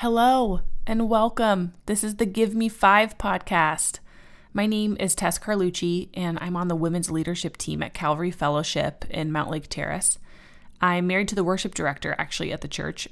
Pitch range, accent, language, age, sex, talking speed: 150-185 Hz, American, English, 20-39, female, 175 wpm